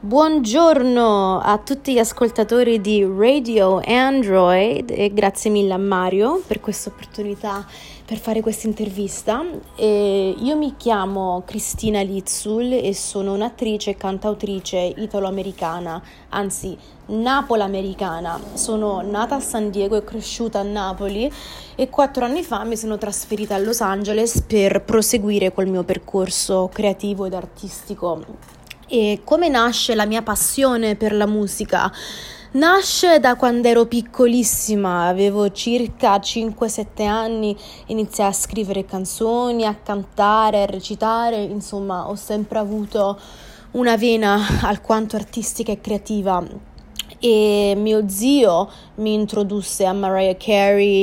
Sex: female